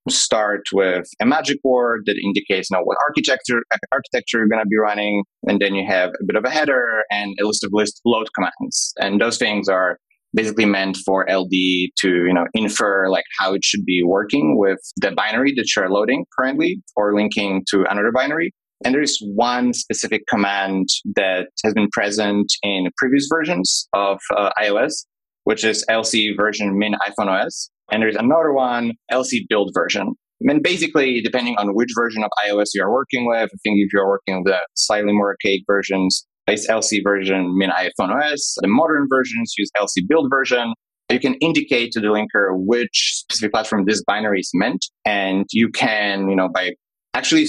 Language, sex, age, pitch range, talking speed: English, male, 20-39, 100-120 Hz, 190 wpm